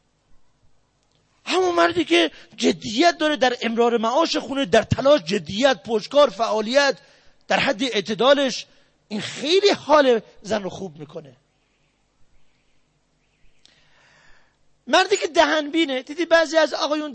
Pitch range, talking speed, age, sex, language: 215-315 Hz, 110 wpm, 40-59, male, Persian